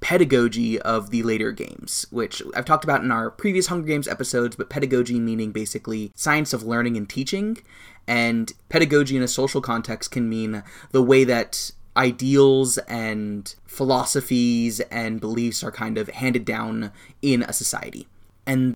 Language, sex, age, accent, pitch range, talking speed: English, male, 20-39, American, 115-135 Hz, 155 wpm